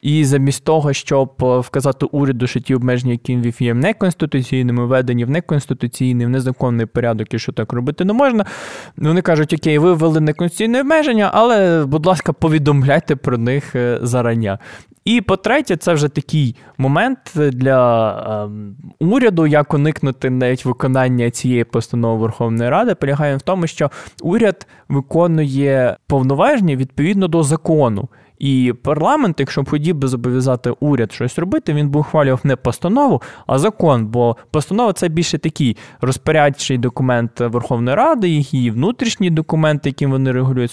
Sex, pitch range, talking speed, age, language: male, 125-165 Hz, 145 wpm, 20-39, Ukrainian